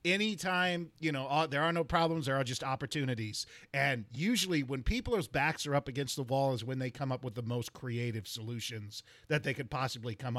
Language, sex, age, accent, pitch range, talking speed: English, male, 40-59, American, 140-180 Hz, 210 wpm